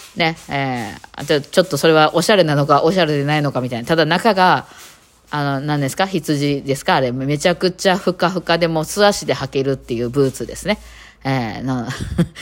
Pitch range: 135-190 Hz